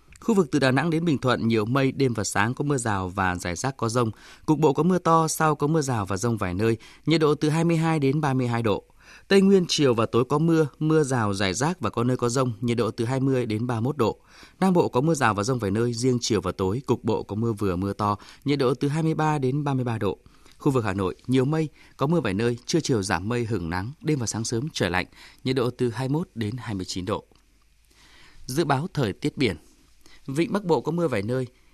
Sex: male